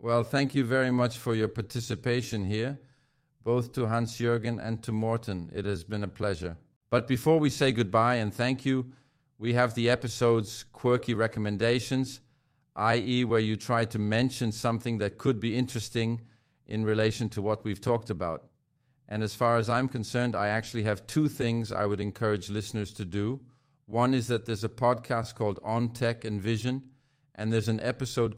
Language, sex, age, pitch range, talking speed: Danish, male, 50-69, 105-125 Hz, 180 wpm